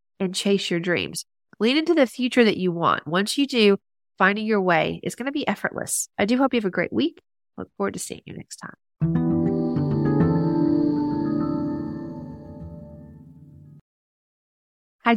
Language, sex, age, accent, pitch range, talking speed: English, female, 30-49, American, 175-240 Hz, 150 wpm